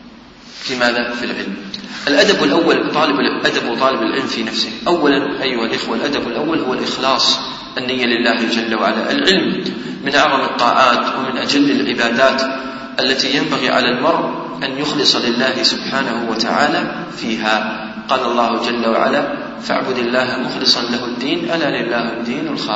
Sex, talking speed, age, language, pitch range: male, 115 wpm, 40-59, English, 115-140 Hz